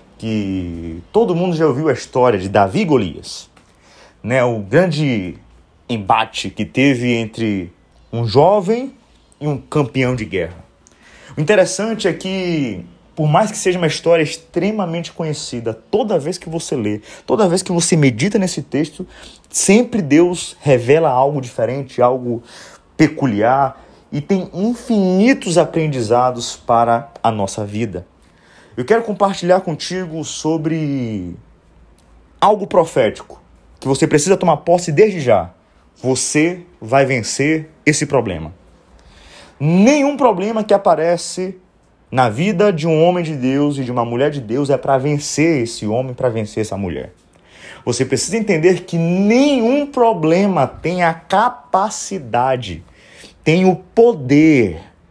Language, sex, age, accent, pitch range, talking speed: Portuguese, male, 30-49, Brazilian, 120-180 Hz, 130 wpm